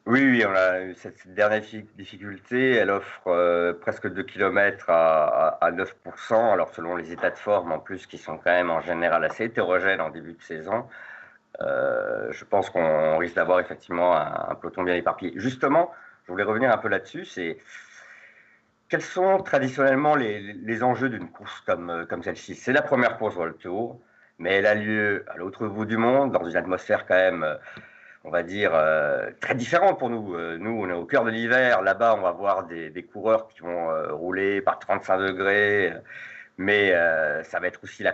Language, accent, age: French, French, 50-69